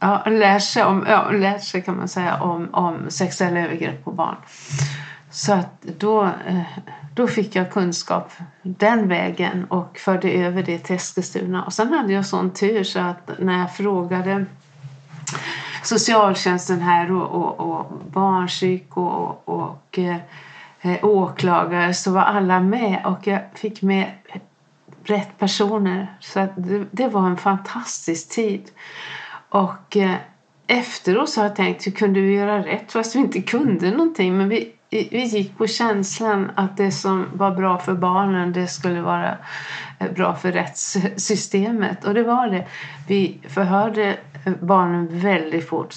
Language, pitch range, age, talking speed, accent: Swedish, 175-205 Hz, 50-69, 150 wpm, native